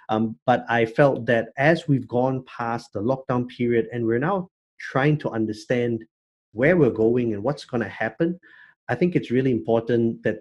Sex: male